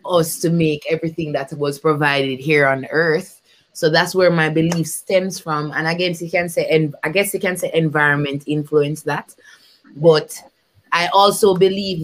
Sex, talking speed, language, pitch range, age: female, 175 wpm, English, 155-195 Hz, 20-39